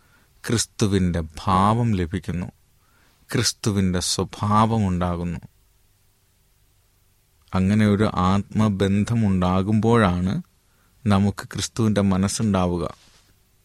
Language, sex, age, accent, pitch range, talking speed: Malayalam, male, 30-49, native, 95-110 Hz, 50 wpm